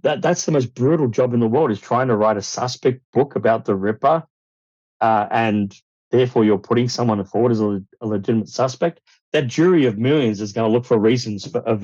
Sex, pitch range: male, 95-120 Hz